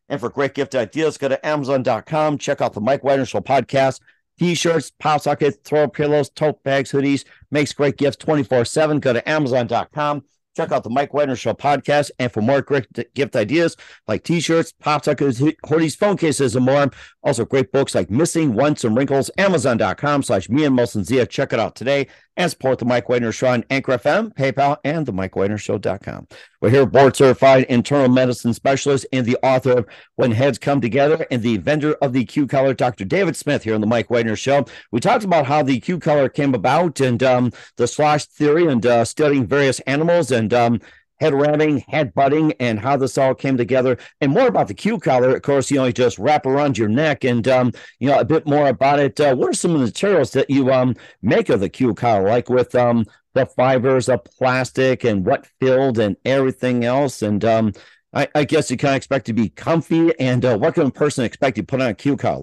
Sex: male